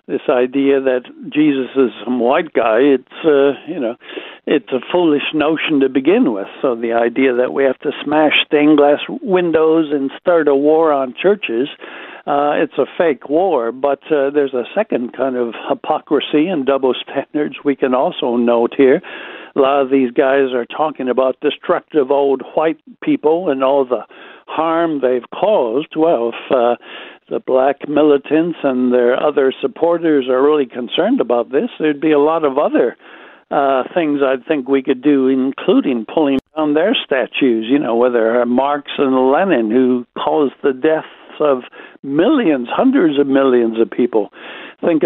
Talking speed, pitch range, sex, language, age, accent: 170 wpm, 125-150 Hz, male, English, 60-79, American